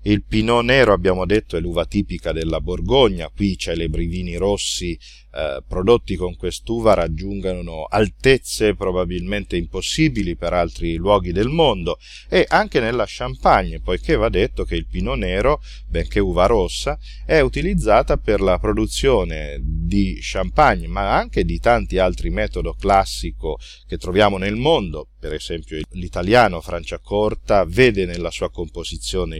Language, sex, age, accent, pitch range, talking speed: Italian, male, 40-59, native, 80-105 Hz, 140 wpm